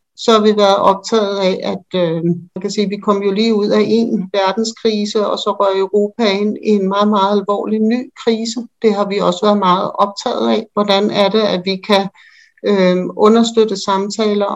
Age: 60-79